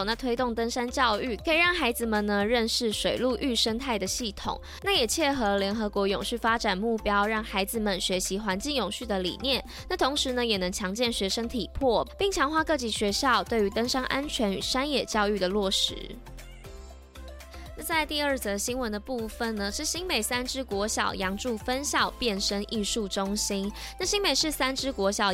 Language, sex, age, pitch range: Chinese, female, 20-39, 200-255 Hz